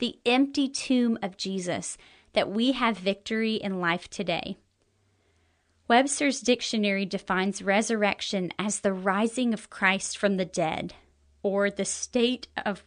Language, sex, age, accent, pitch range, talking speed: English, female, 30-49, American, 195-245 Hz, 130 wpm